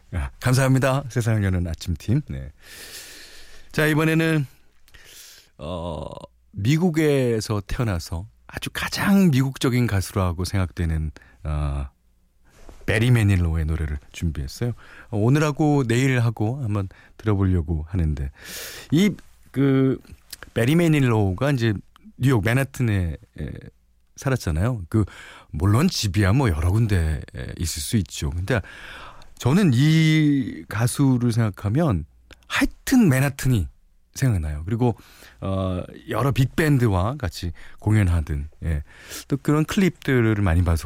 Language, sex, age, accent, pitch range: Korean, male, 40-59, native, 85-135 Hz